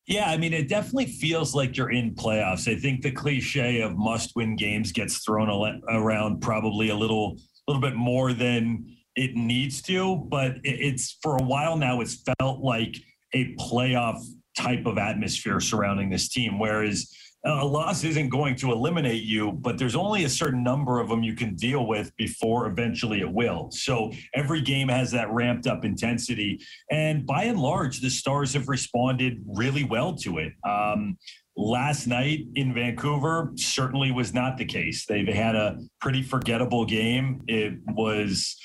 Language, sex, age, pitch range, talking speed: English, male, 40-59, 110-135 Hz, 170 wpm